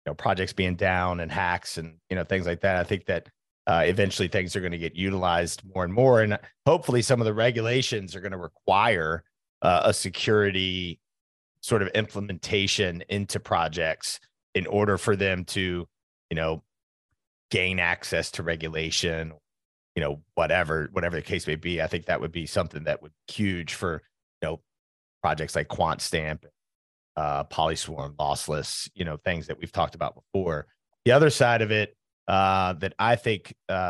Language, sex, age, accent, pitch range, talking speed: English, male, 30-49, American, 85-105 Hz, 180 wpm